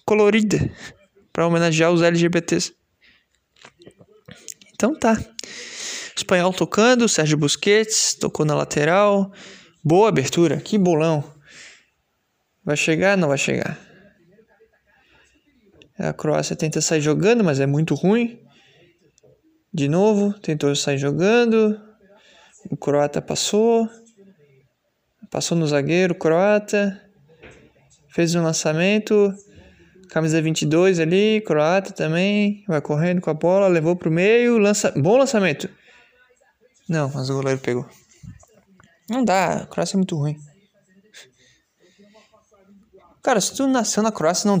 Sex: male